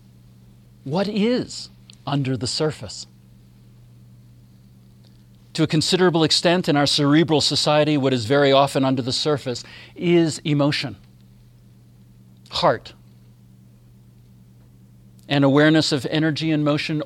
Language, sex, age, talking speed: English, male, 40-59, 100 wpm